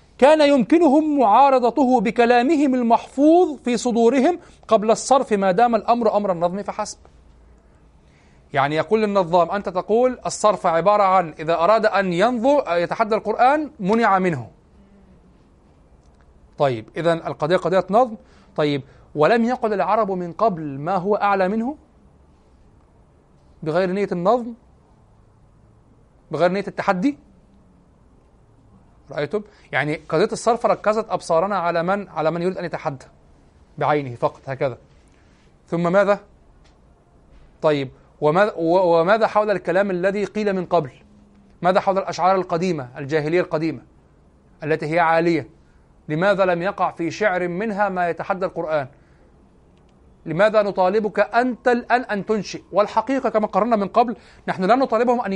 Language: Arabic